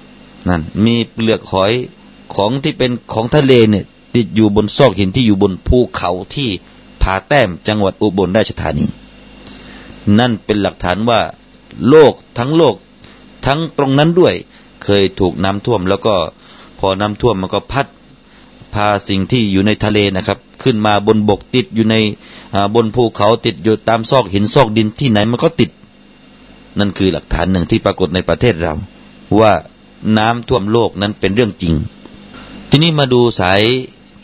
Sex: male